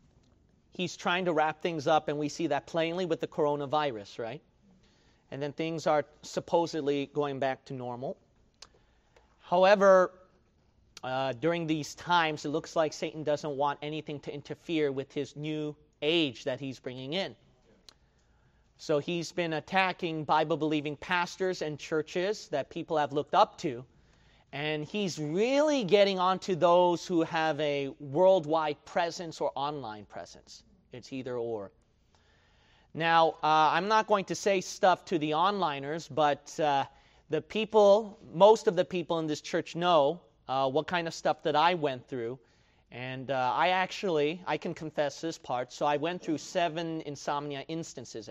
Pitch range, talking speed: 145-175 Hz, 155 wpm